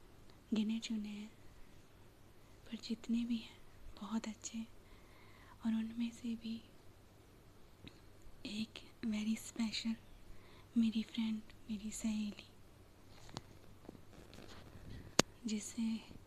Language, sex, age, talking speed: Hindi, female, 20-39, 75 wpm